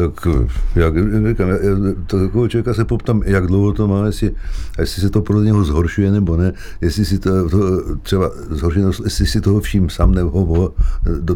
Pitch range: 80-100 Hz